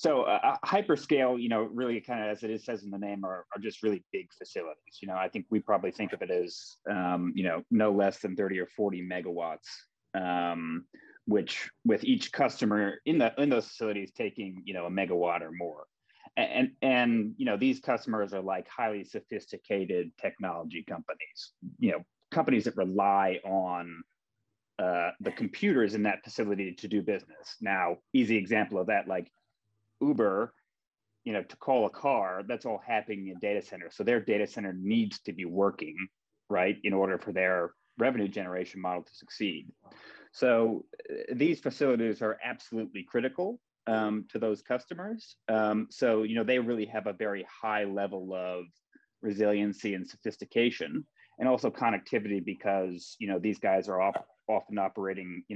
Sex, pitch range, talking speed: male, 95-120 Hz, 175 wpm